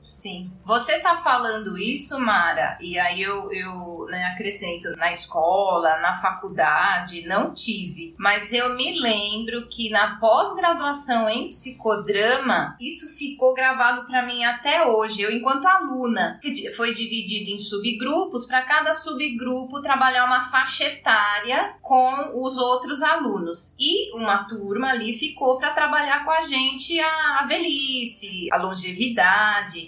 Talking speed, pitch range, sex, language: 135 wpm, 210-280 Hz, female, Portuguese